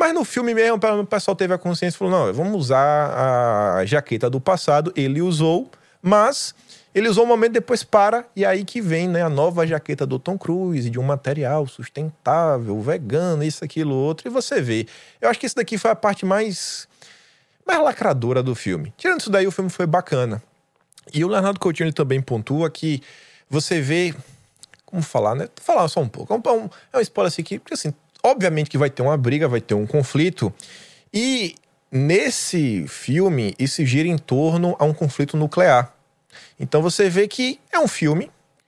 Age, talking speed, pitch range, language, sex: 20-39, 190 wpm, 135-190 Hz, Portuguese, male